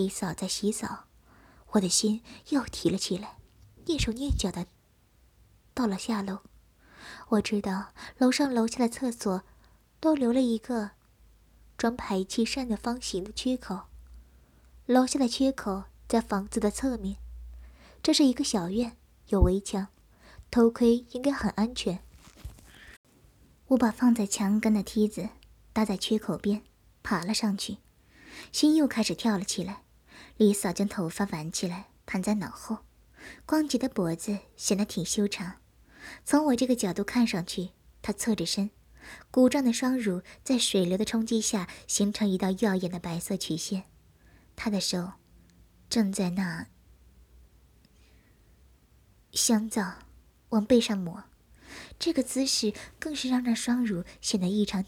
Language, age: Chinese, 20-39